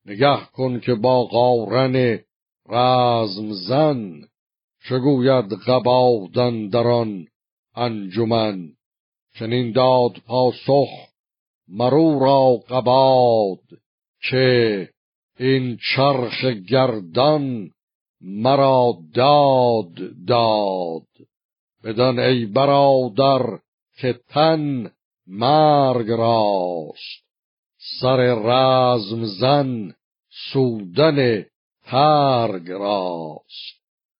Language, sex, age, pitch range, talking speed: Persian, male, 60-79, 110-135 Hz, 65 wpm